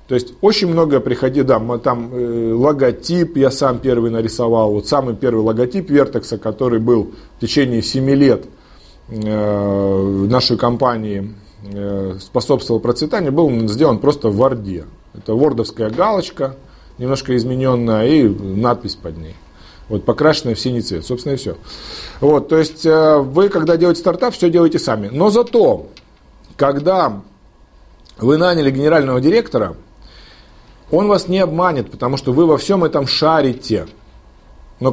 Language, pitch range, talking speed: Russian, 110-150 Hz, 135 wpm